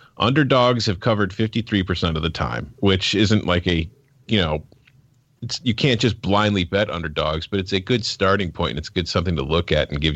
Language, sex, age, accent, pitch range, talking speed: English, male, 40-59, American, 90-120 Hz, 200 wpm